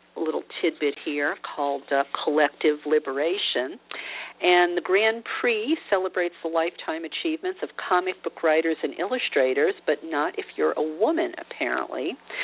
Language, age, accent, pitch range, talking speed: English, 50-69, American, 155-220 Hz, 140 wpm